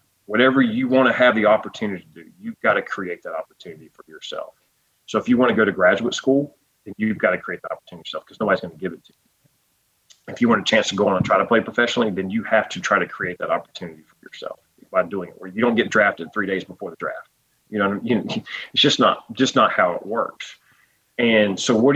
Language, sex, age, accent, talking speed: English, male, 30-49, American, 260 wpm